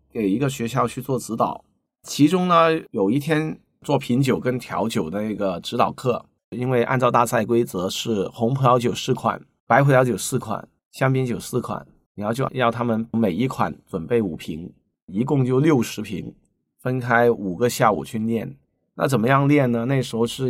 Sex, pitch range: male, 115-135 Hz